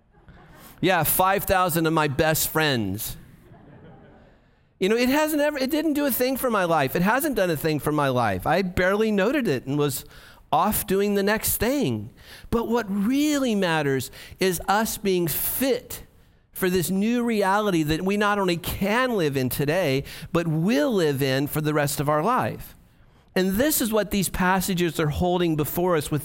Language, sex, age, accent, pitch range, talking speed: English, male, 50-69, American, 145-200 Hz, 180 wpm